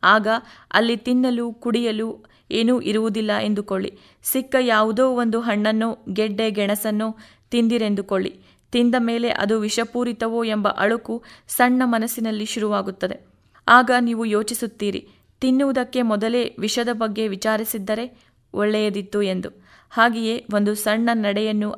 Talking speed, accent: 100 wpm, native